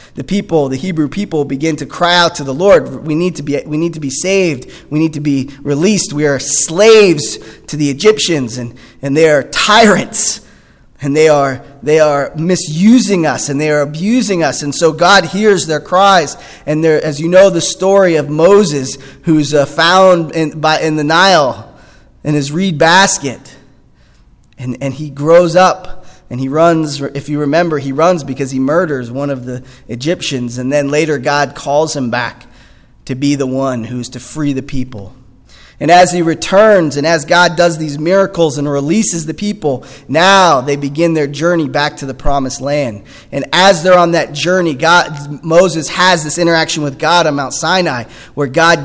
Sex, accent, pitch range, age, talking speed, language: male, American, 140-170 Hz, 20-39, 190 wpm, English